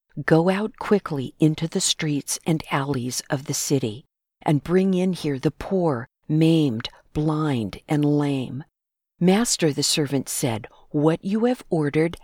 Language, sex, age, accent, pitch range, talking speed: English, female, 50-69, American, 145-180 Hz, 140 wpm